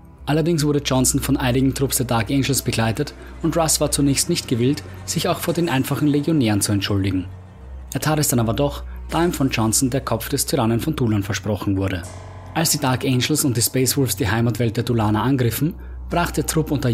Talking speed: 210 wpm